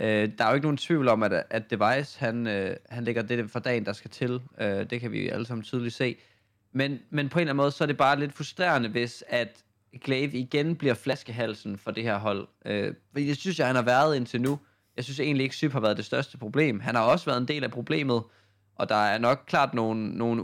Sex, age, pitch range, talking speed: male, 20-39, 110-135 Hz, 260 wpm